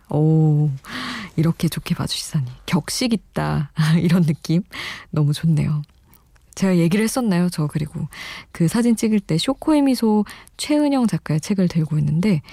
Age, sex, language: 20-39, female, Korean